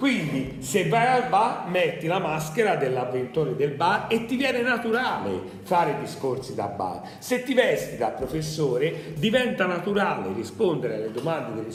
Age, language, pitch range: 40-59, Italian, 150-220 Hz